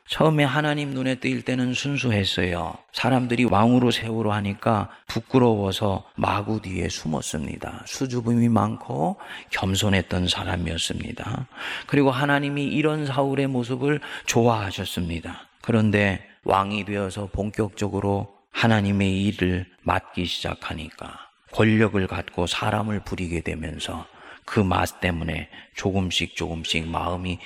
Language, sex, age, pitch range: Korean, male, 30-49, 90-120 Hz